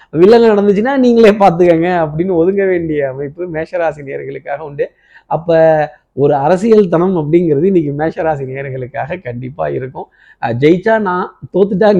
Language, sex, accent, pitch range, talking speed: Tamil, male, native, 145-190 Hz, 120 wpm